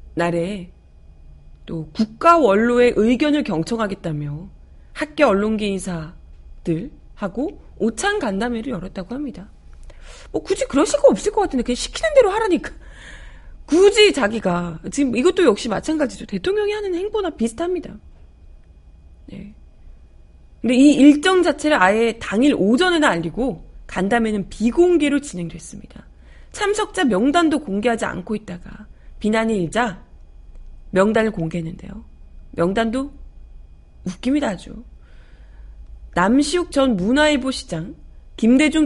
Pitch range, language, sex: 180-285 Hz, Korean, female